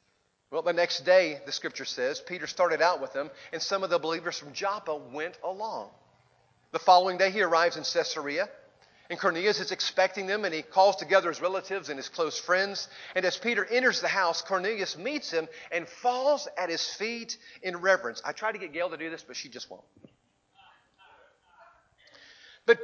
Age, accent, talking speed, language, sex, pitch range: 40-59, American, 190 wpm, English, male, 160-225 Hz